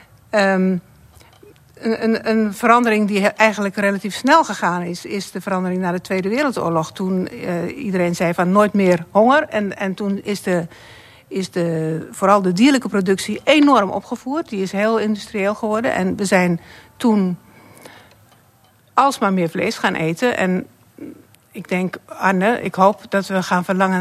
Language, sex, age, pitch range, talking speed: Dutch, female, 60-79, 185-220 Hz, 160 wpm